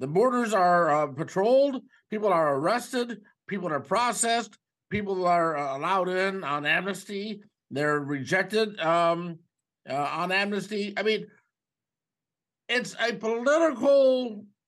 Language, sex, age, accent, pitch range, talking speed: English, male, 50-69, American, 175-235 Hz, 120 wpm